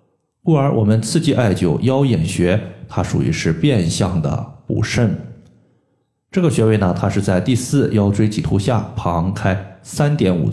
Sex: male